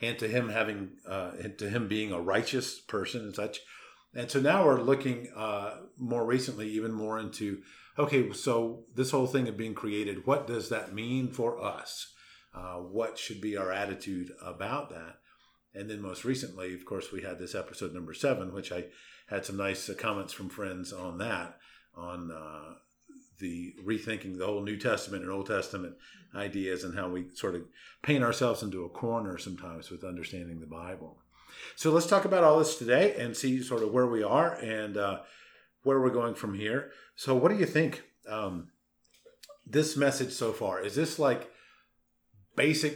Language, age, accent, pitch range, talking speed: English, 50-69, American, 95-125 Hz, 180 wpm